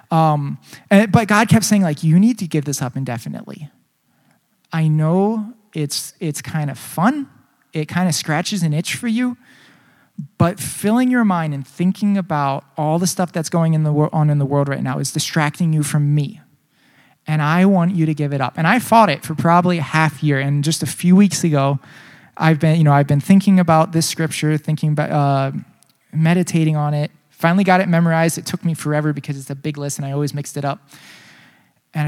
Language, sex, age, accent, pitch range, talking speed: English, male, 20-39, American, 145-175 Hz, 205 wpm